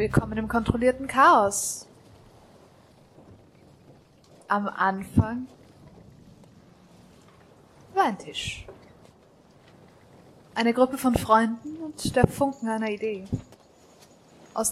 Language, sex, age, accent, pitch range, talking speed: German, female, 20-39, German, 195-270 Hz, 75 wpm